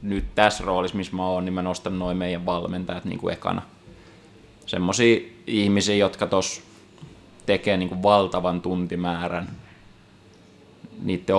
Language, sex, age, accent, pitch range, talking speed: Finnish, male, 20-39, native, 90-100 Hz, 125 wpm